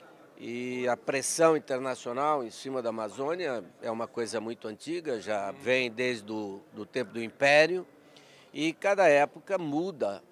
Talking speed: 140 wpm